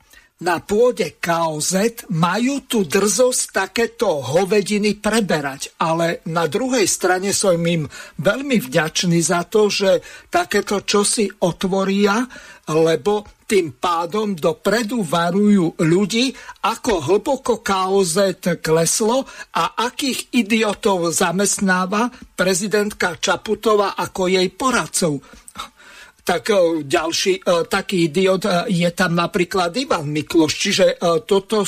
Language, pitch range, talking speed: Slovak, 175-215 Hz, 100 wpm